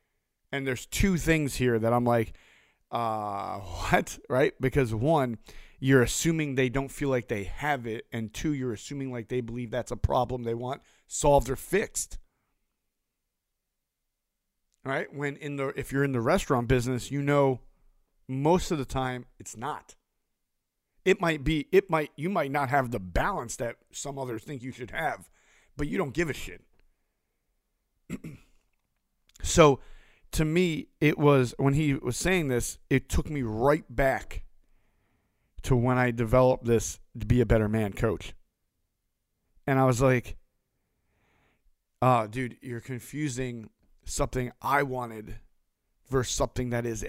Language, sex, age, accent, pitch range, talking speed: English, male, 40-59, American, 115-140 Hz, 155 wpm